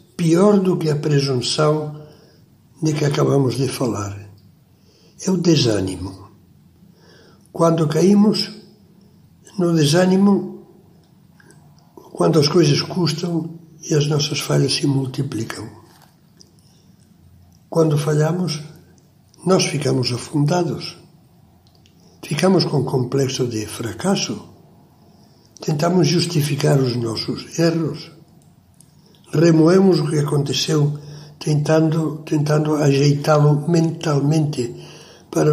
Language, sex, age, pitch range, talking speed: Portuguese, male, 60-79, 145-170 Hz, 90 wpm